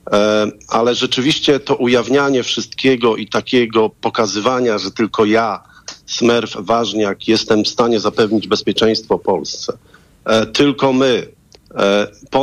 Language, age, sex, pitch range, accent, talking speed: Polish, 40-59, male, 105-130 Hz, native, 105 wpm